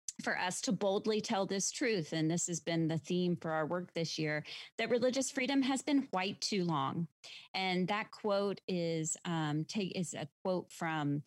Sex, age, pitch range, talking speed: female, 30-49, 160-200 Hz, 190 wpm